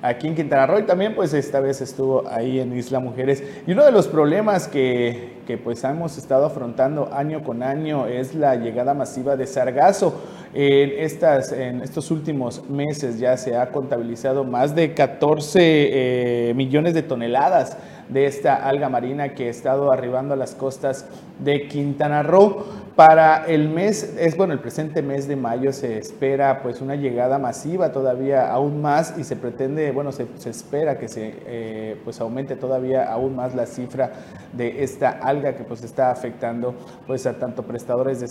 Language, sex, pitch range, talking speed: Spanish, male, 125-145 Hz, 175 wpm